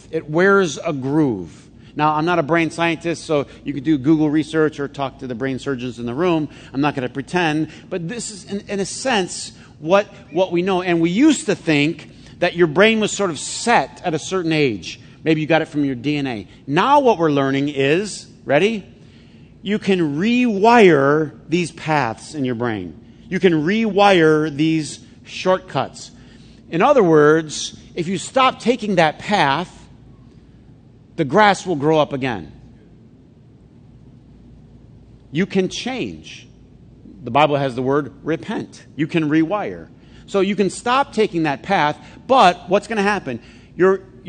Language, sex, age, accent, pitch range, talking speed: English, male, 50-69, American, 145-190 Hz, 165 wpm